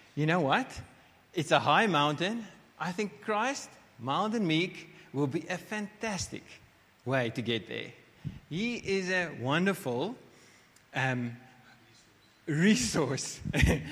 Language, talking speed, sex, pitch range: English, 115 wpm, male, 120-170 Hz